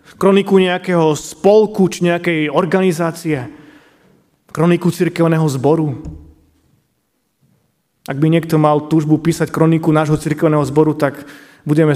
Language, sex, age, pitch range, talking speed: Slovak, male, 30-49, 150-205 Hz, 105 wpm